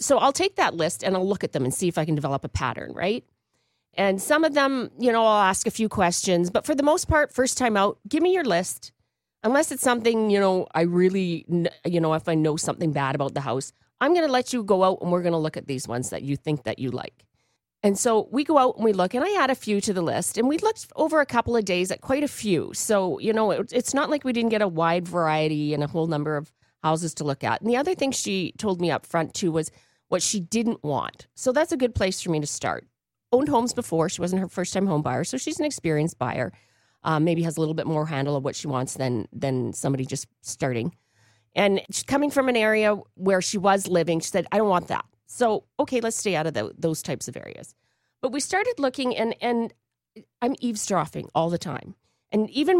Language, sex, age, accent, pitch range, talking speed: English, female, 40-59, American, 155-230 Hz, 255 wpm